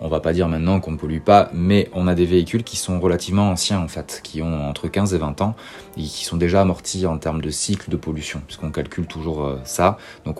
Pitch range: 80-95 Hz